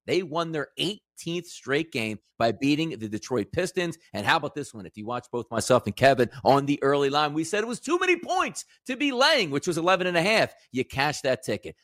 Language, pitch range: English, 135-200 Hz